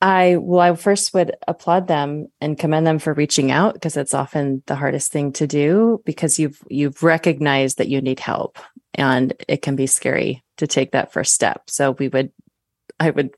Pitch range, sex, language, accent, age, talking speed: 140-170 Hz, female, English, American, 30-49, 195 wpm